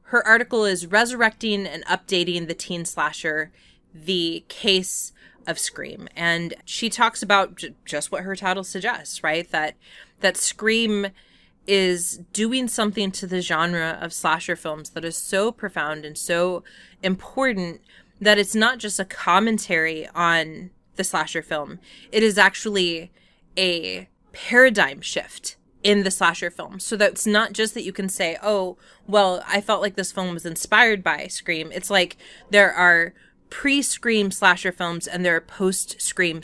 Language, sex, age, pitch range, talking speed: English, female, 20-39, 170-210 Hz, 150 wpm